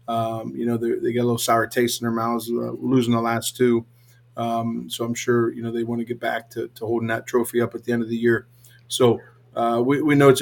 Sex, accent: male, American